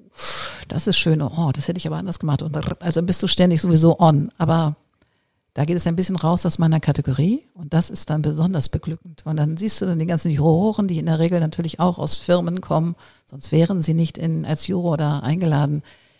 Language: German